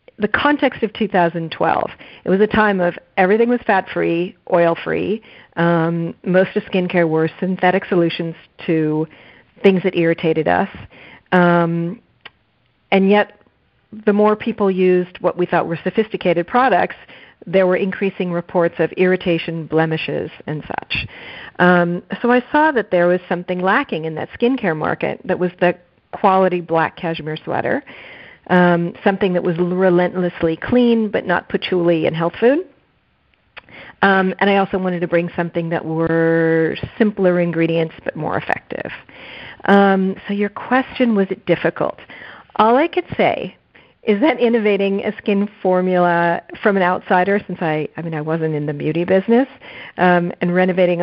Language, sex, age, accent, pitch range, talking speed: English, female, 40-59, American, 170-200 Hz, 150 wpm